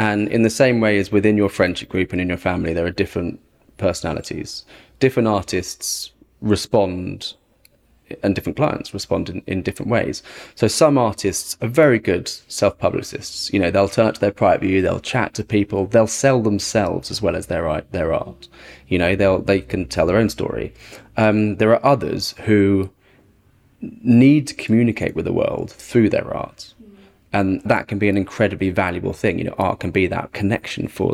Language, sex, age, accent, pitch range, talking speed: English, male, 20-39, British, 95-115 Hz, 185 wpm